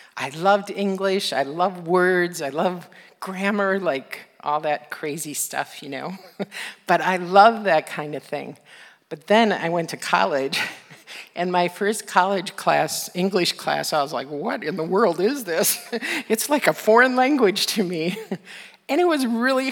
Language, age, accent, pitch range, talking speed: English, 50-69, American, 155-195 Hz, 170 wpm